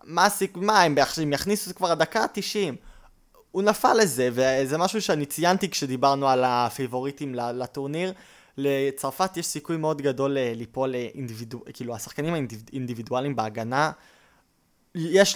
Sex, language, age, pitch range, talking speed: male, Hebrew, 20-39, 120-155 Hz, 130 wpm